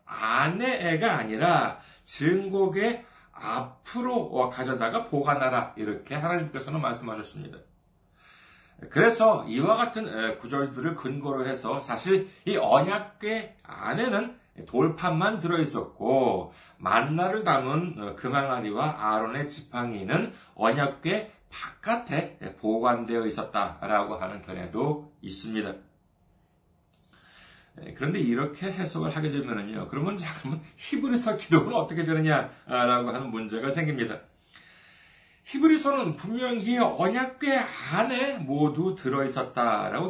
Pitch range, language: 125-210 Hz, Korean